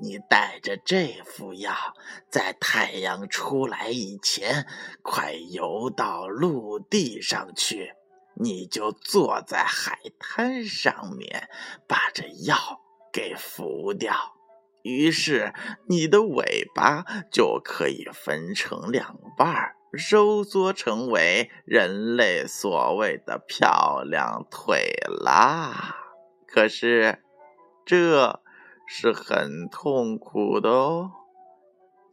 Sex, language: male, Chinese